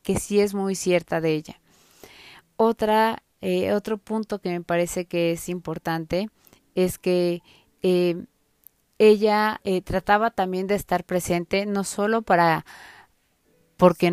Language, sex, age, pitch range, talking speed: Spanish, female, 20-39, 175-200 Hz, 130 wpm